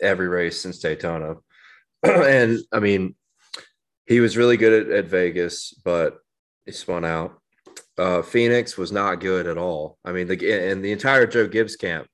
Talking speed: 170 wpm